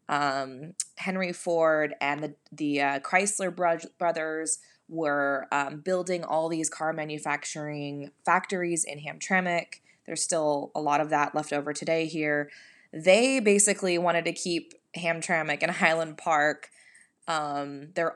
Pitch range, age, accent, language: 150-180 Hz, 20-39, American, English